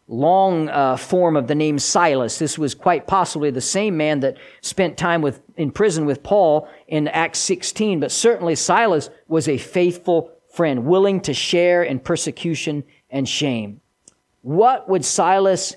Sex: male